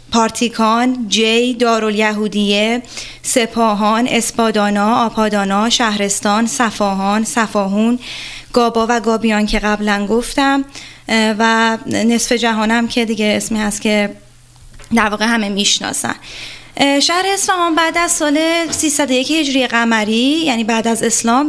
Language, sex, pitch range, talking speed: Persian, female, 220-285 Hz, 110 wpm